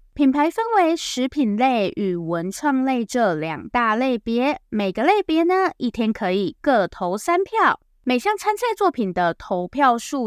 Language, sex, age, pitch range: Chinese, female, 10-29, 195-315 Hz